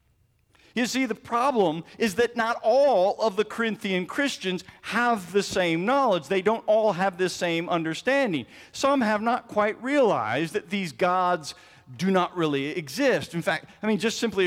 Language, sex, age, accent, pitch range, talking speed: English, male, 50-69, American, 155-215 Hz, 170 wpm